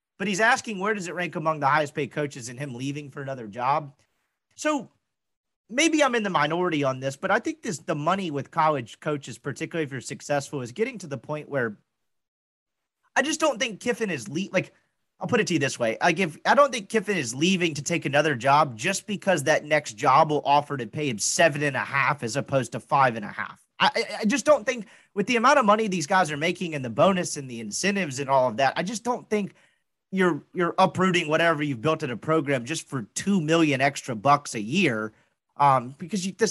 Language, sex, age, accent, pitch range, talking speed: English, male, 30-49, American, 140-190 Hz, 230 wpm